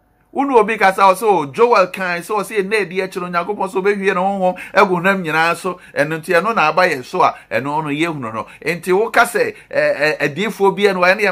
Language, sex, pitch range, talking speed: English, male, 155-205 Hz, 200 wpm